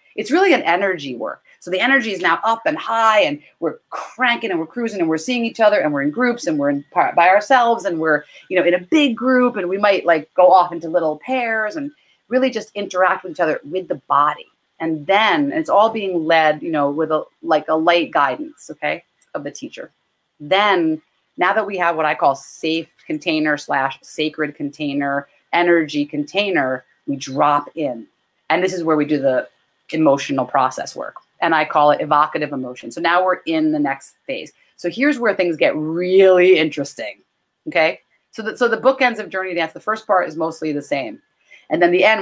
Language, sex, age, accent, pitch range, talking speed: English, female, 30-49, American, 155-220 Hz, 210 wpm